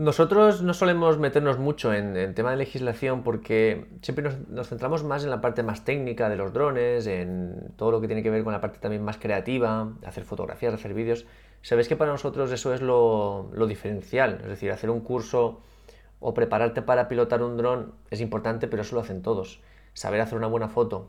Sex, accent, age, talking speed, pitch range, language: male, Spanish, 20-39, 210 wpm, 110-130 Hz, Spanish